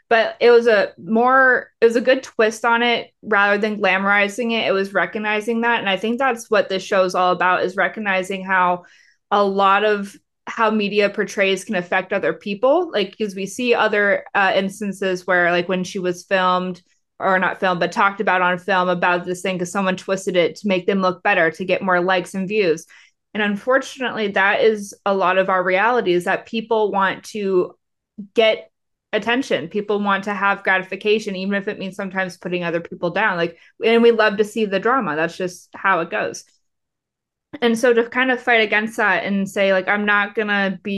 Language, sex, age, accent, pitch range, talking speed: English, female, 20-39, American, 185-215 Hz, 205 wpm